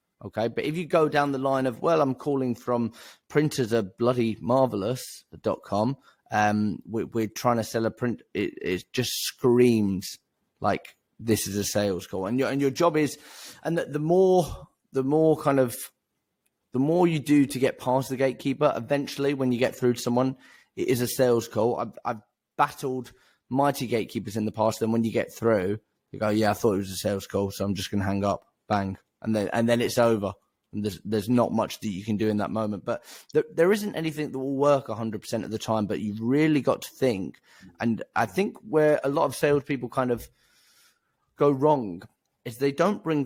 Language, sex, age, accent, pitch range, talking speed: English, male, 20-39, British, 110-140 Hz, 210 wpm